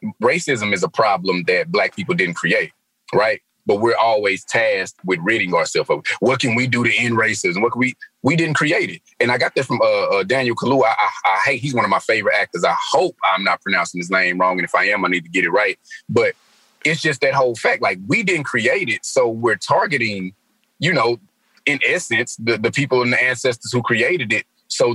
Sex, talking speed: male, 235 wpm